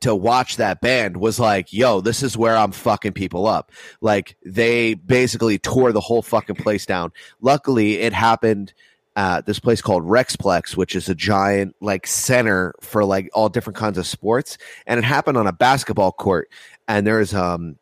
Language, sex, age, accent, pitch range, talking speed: English, male, 30-49, American, 100-120 Hz, 185 wpm